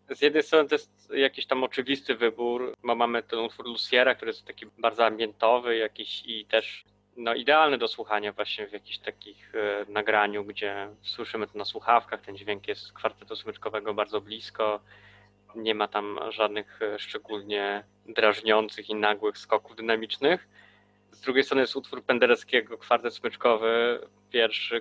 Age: 20-39